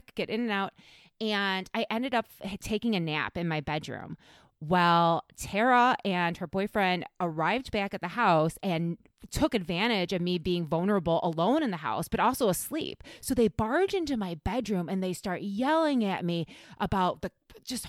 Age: 30-49